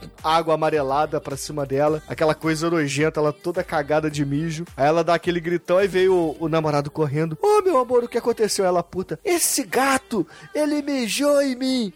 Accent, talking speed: Brazilian, 190 wpm